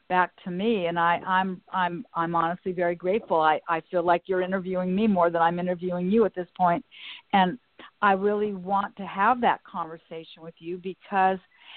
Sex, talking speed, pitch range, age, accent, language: female, 190 wpm, 170-195 Hz, 50-69, American, English